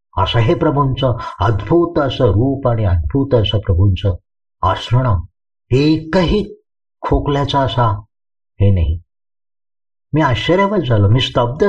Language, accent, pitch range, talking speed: Marathi, native, 105-140 Hz, 105 wpm